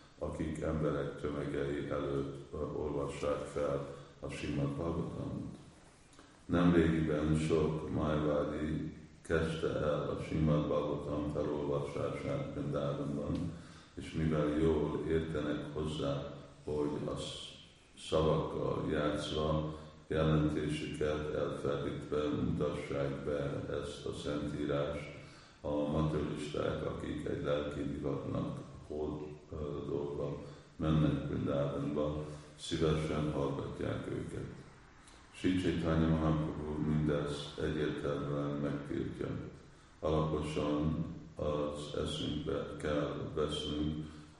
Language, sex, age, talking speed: Hungarian, male, 50-69, 75 wpm